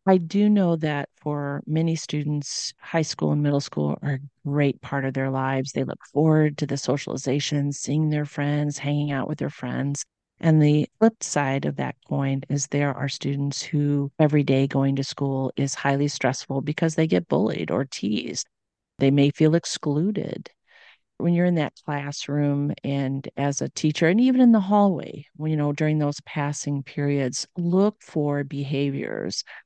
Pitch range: 140-155 Hz